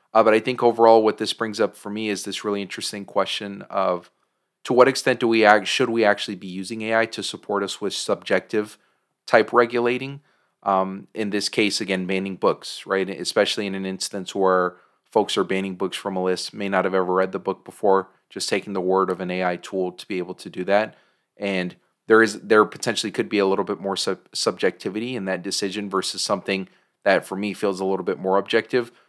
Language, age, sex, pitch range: English, 30-49, male, 95-110 Hz